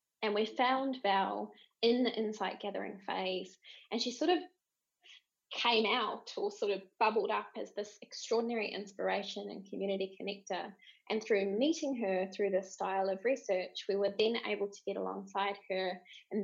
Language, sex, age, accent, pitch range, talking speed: English, female, 20-39, Australian, 195-240 Hz, 165 wpm